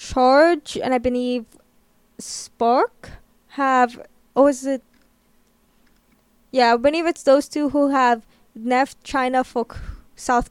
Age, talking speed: 10-29, 130 wpm